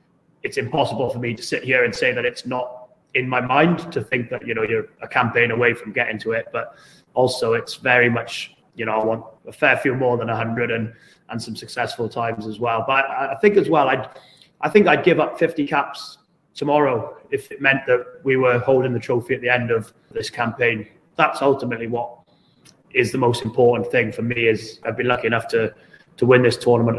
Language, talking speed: English, 220 wpm